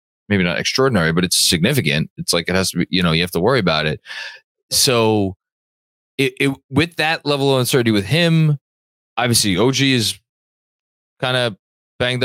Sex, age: male, 20-39